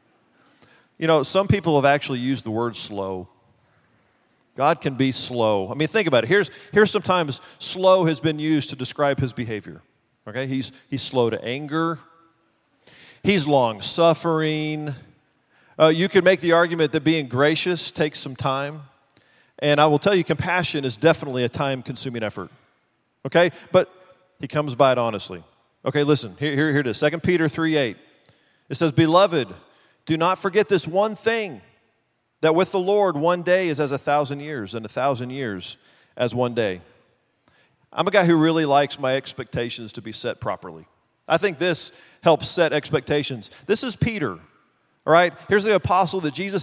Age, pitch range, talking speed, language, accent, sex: 40-59, 130-170 Hz, 170 wpm, English, American, male